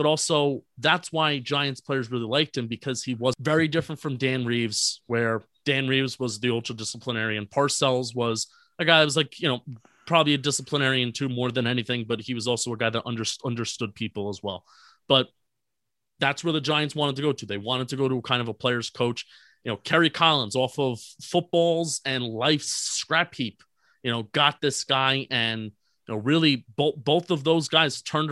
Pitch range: 115-145 Hz